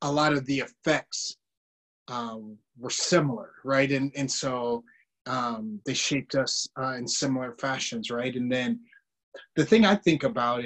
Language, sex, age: English, male, 30-49